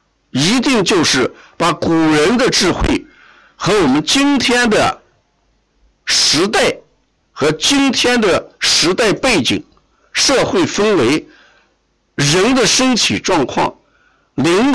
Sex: male